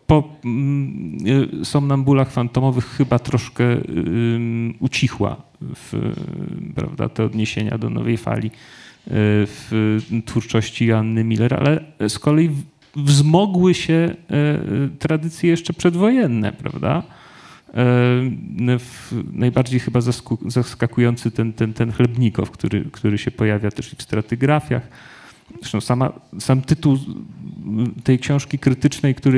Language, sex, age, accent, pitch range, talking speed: Polish, male, 40-59, native, 110-135 Hz, 100 wpm